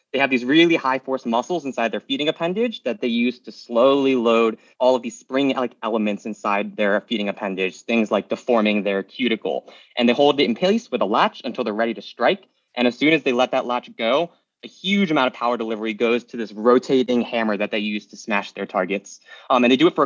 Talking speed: 235 wpm